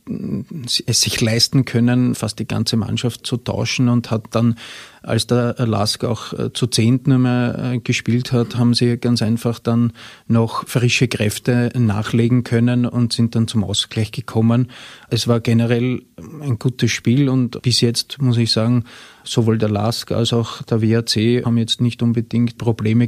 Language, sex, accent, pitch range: German, male, Austrian, 115-125 Hz